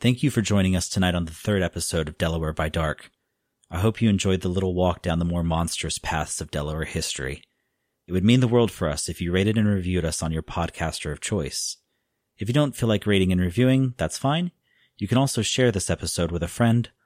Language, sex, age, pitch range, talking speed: English, male, 30-49, 85-110 Hz, 230 wpm